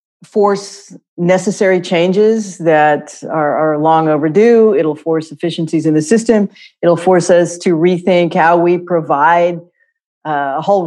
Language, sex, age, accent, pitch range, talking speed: English, female, 40-59, American, 170-215 Hz, 140 wpm